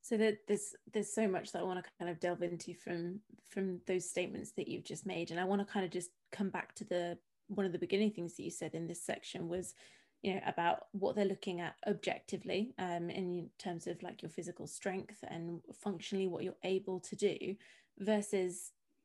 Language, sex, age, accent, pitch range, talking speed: English, female, 20-39, British, 175-205 Hz, 215 wpm